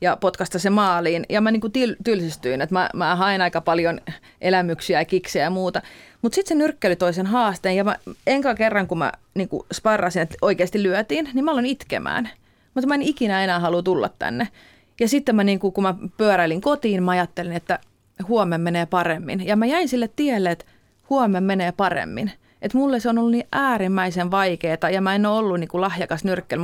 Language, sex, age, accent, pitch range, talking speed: Finnish, female, 30-49, native, 180-230 Hz, 200 wpm